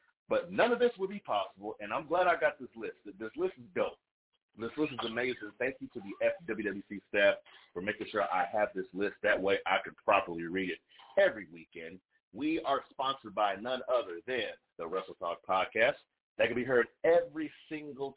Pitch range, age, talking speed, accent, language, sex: 110-155 Hz, 40-59, 200 wpm, American, English, male